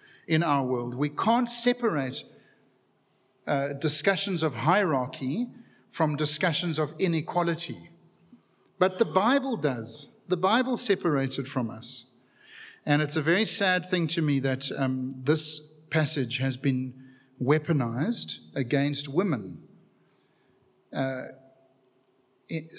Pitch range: 135-180 Hz